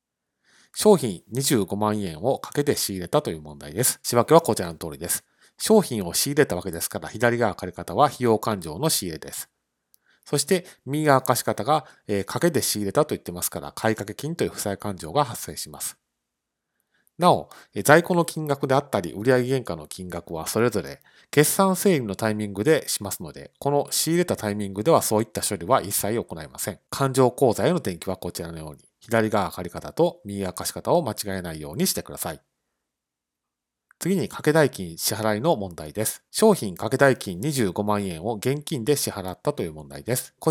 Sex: male